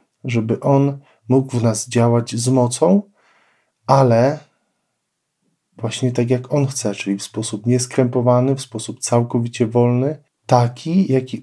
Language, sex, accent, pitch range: Polish, male, native, 110-125 Hz